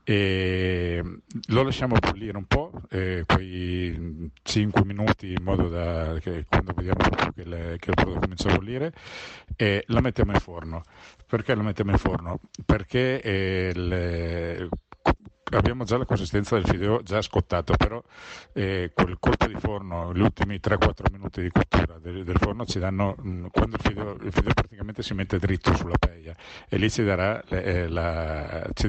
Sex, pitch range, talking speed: male, 85-105 Hz, 175 wpm